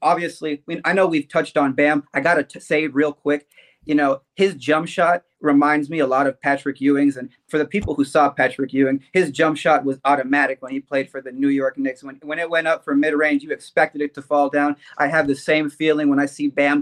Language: English